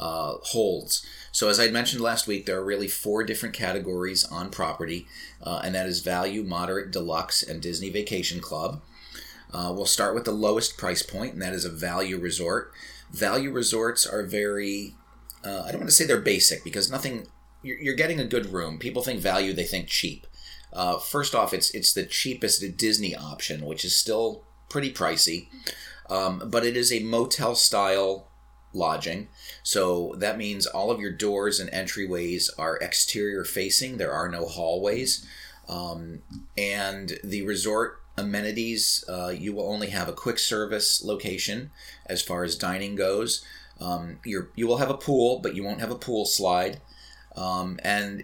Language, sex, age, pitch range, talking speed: English, male, 30-49, 90-115 Hz, 175 wpm